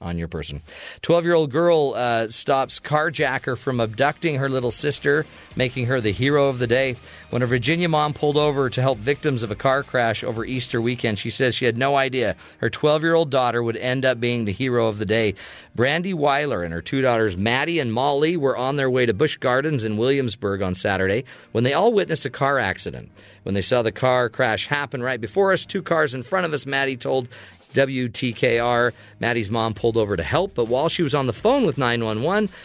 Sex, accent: male, American